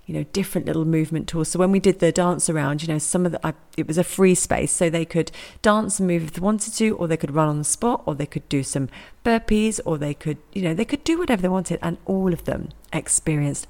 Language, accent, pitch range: English, British, 145-175 Hz